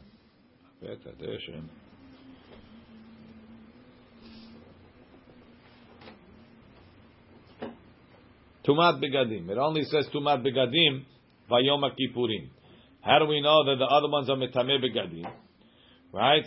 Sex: male